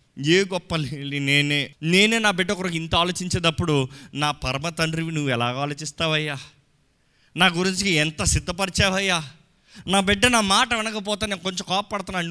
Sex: male